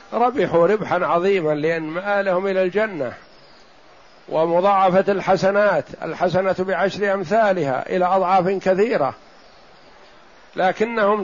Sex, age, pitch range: male, 60-79, 175-205 Hz